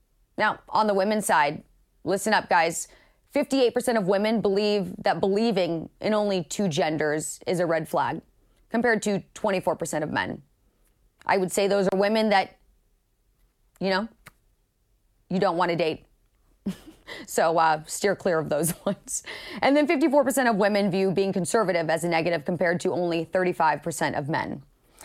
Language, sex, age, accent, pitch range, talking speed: English, female, 30-49, American, 175-220 Hz, 155 wpm